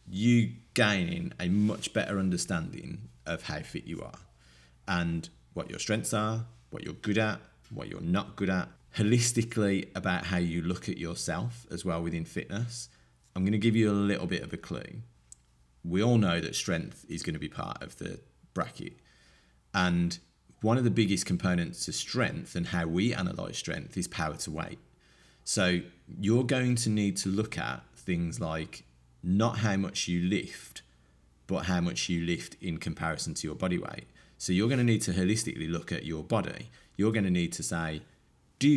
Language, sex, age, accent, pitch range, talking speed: English, male, 30-49, British, 80-110 Hz, 185 wpm